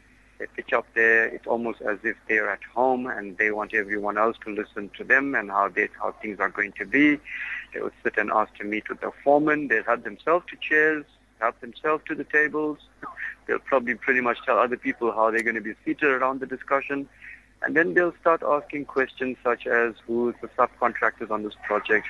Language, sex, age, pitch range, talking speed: English, male, 50-69, 110-130 Hz, 210 wpm